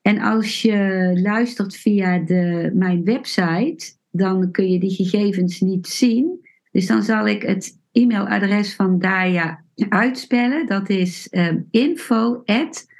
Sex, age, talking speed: female, 50-69, 120 wpm